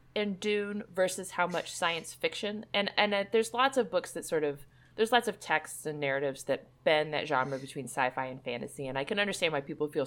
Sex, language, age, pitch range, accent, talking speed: female, English, 30-49, 145-210 Hz, American, 220 wpm